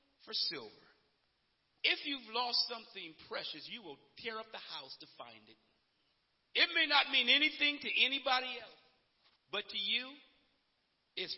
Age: 50-69